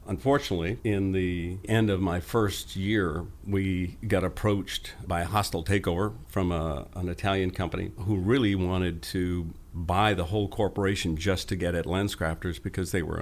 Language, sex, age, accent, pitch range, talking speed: English, male, 50-69, American, 90-100 Hz, 160 wpm